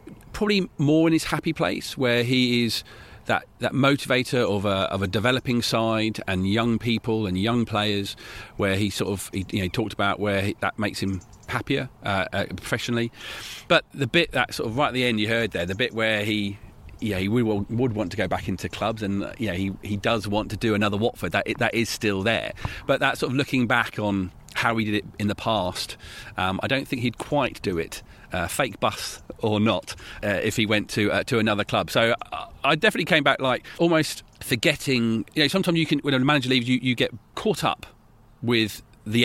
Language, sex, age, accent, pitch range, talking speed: English, male, 40-59, British, 100-125 Hz, 220 wpm